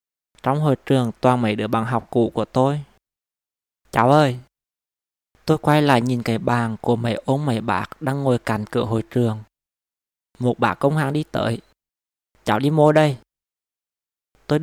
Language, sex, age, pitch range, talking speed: Vietnamese, male, 20-39, 110-135 Hz, 170 wpm